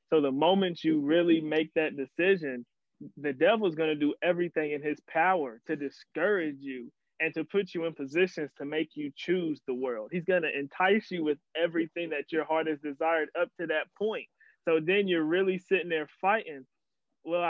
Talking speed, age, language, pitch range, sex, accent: 195 wpm, 20-39, English, 145-175 Hz, male, American